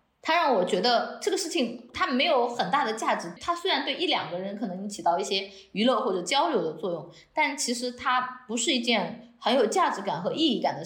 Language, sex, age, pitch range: Chinese, female, 20-39, 200-280 Hz